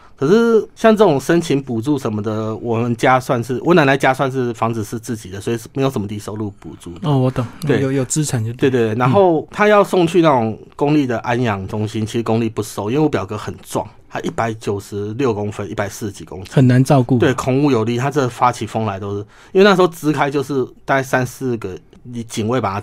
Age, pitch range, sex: 30-49, 110-140 Hz, male